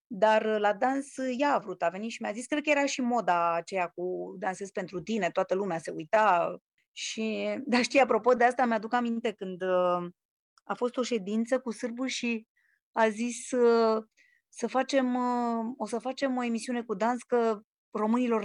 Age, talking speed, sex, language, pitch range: 30-49, 175 wpm, female, Romanian, 200-245 Hz